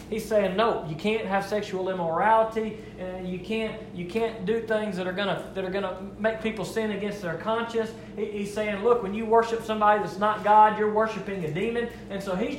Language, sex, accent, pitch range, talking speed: English, male, American, 155-220 Hz, 210 wpm